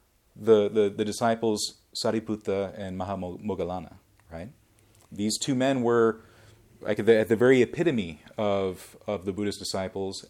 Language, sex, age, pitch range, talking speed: English, male, 30-49, 100-120 Hz, 145 wpm